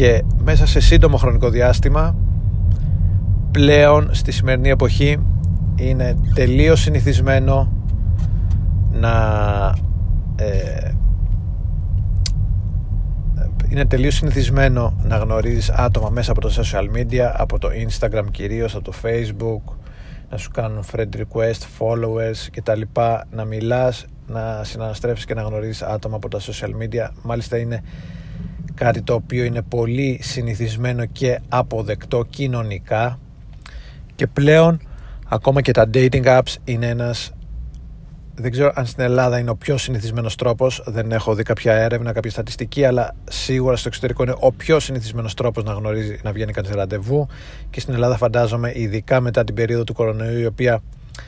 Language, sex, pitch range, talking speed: Greek, male, 100-125 Hz, 140 wpm